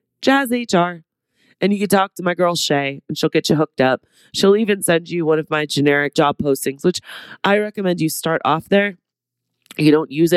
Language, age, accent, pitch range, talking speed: English, 30-49, American, 145-190 Hz, 210 wpm